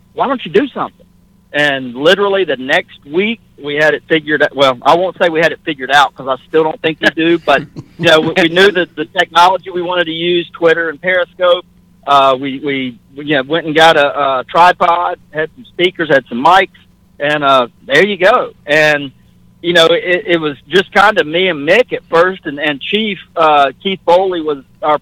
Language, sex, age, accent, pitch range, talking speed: English, male, 50-69, American, 145-175 Hz, 220 wpm